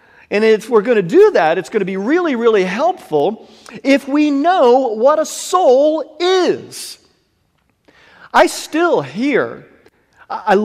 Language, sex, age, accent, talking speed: English, male, 40-59, American, 140 wpm